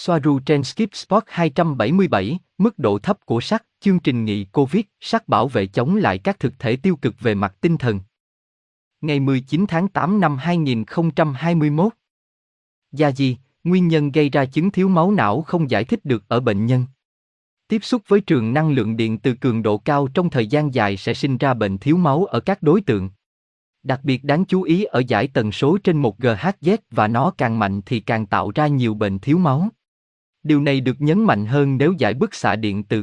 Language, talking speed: Vietnamese, 200 wpm